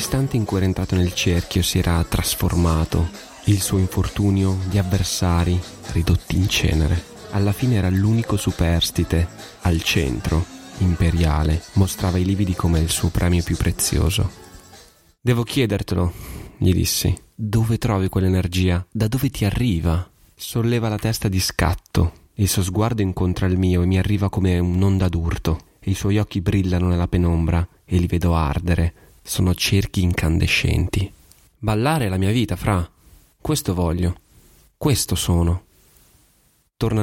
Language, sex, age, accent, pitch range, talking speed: Italian, male, 20-39, native, 85-105 Hz, 145 wpm